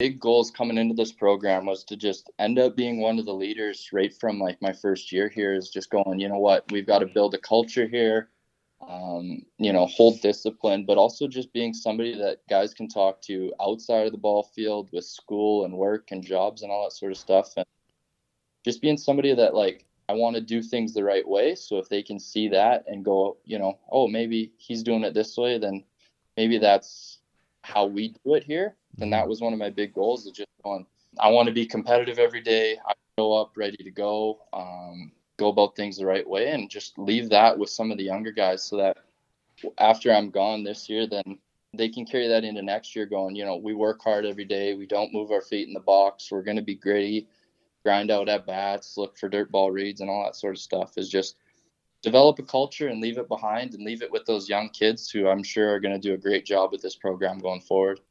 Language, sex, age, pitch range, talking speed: English, male, 20-39, 100-115 Hz, 240 wpm